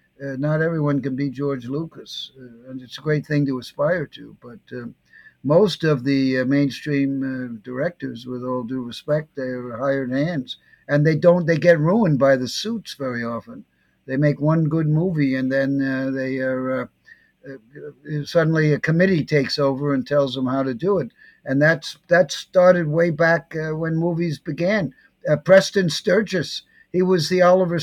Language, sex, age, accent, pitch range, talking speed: English, male, 60-79, American, 140-180 Hz, 185 wpm